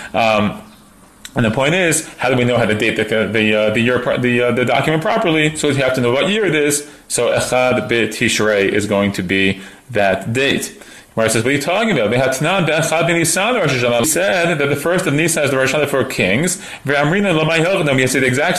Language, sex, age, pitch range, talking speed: English, male, 30-49, 115-165 Hz, 210 wpm